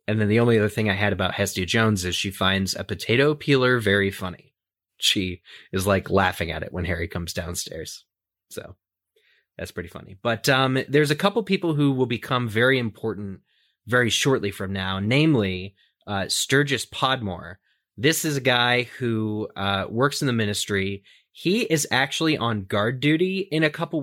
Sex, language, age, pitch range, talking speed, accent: male, English, 30-49, 100-130 Hz, 175 wpm, American